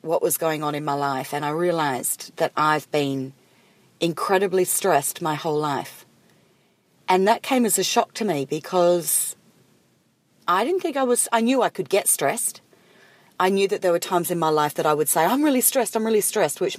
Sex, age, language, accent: female, 40-59, English, Australian